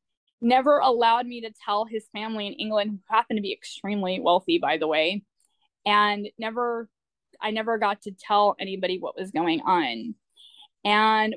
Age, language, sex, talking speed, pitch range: 10-29, English, female, 165 wpm, 195-225 Hz